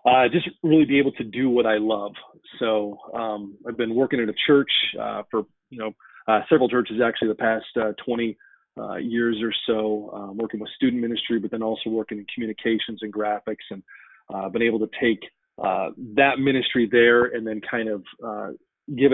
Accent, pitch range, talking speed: American, 110-125 Hz, 200 wpm